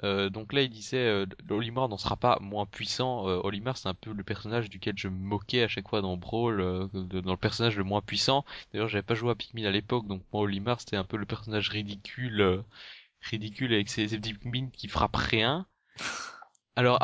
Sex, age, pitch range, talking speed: male, 20-39, 100-125 Hz, 230 wpm